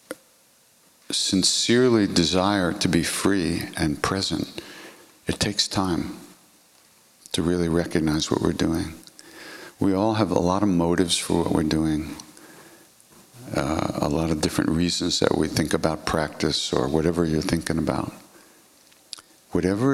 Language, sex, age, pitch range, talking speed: English, male, 60-79, 85-105 Hz, 130 wpm